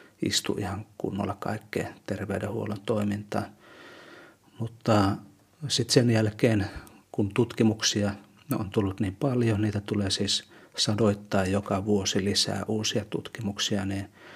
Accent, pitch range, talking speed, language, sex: native, 100-115 Hz, 110 wpm, Finnish, male